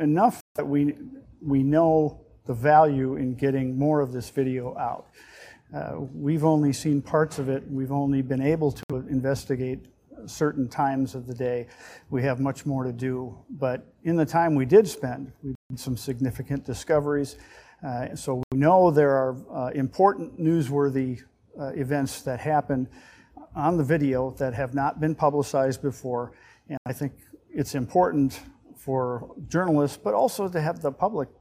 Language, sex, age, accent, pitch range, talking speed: English, male, 50-69, American, 130-145 Hz, 160 wpm